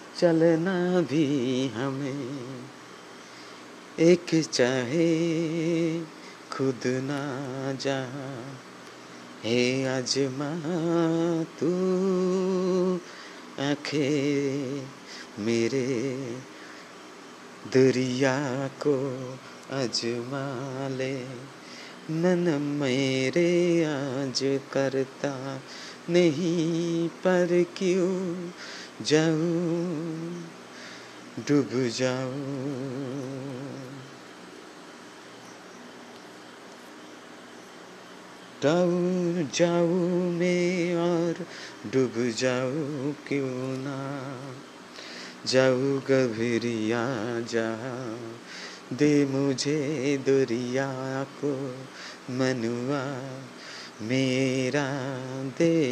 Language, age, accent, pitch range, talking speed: Bengali, 30-49, native, 130-165 Hz, 40 wpm